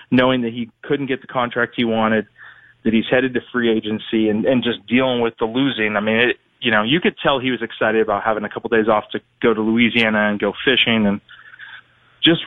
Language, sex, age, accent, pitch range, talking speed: English, male, 20-39, American, 110-130 Hz, 235 wpm